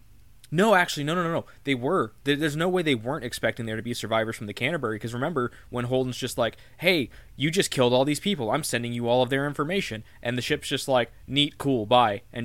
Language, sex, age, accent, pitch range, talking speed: English, male, 20-39, American, 110-140 Hz, 240 wpm